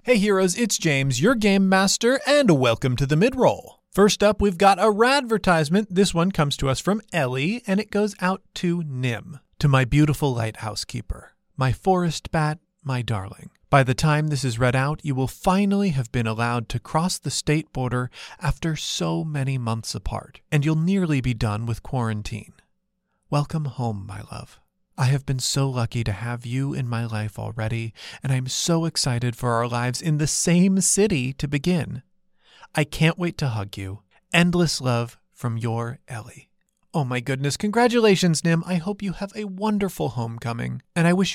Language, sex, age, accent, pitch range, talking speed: English, male, 30-49, American, 125-190 Hz, 185 wpm